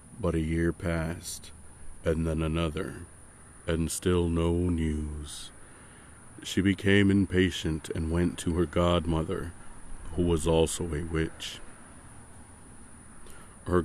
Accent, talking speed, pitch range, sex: American, 110 wpm, 80-90 Hz, male